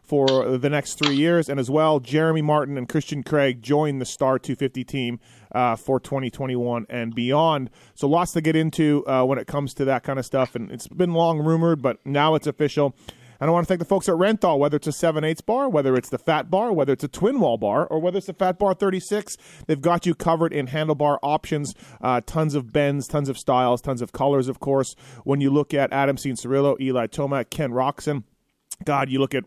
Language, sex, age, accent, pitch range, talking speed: English, male, 30-49, American, 130-160 Hz, 230 wpm